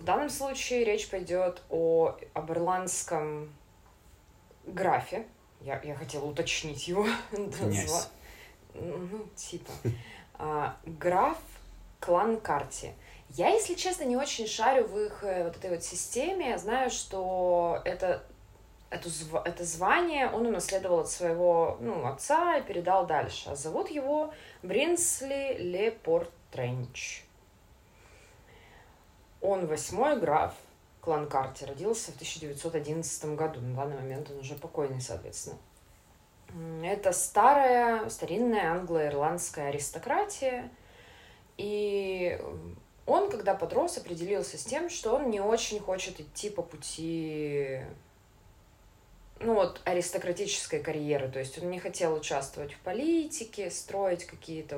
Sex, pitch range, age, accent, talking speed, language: female, 145-225 Hz, 20-39, native, 100 wpm, Russian